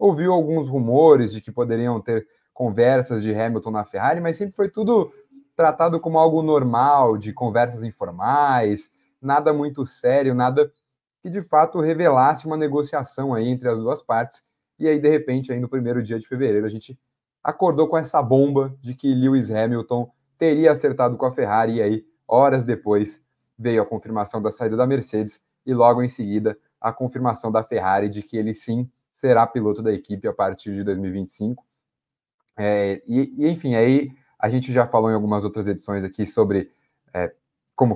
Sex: male